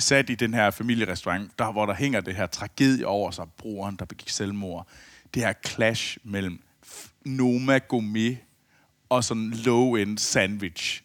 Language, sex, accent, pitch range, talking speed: Danish, male, native, 105-135 Hz, 165 wpm